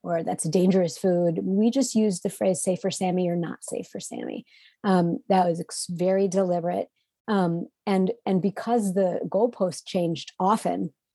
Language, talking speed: English, 165 wpm